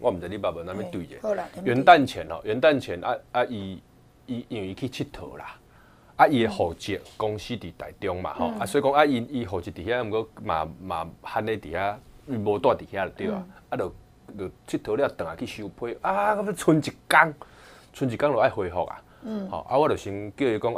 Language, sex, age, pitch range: Chinese, male, 20-39, 95-125 Hz